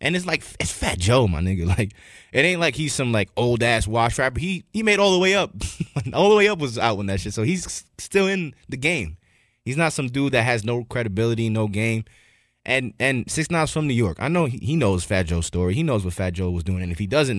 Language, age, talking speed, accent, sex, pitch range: English, 20-39, 265 wpm, American, male, 95-130 Hz